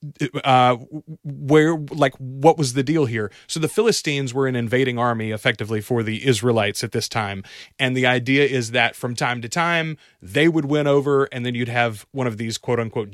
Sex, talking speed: male, 200 wpm